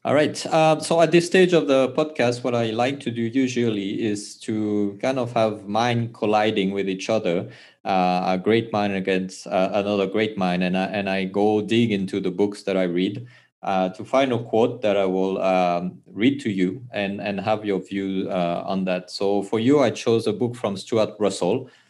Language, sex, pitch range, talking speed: English, male, 95-115 Hz, 210 wpm